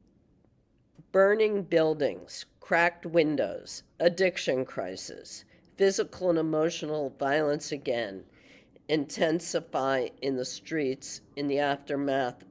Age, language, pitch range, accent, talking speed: 40-59, English, 135-170 Hz, American, 85 wpm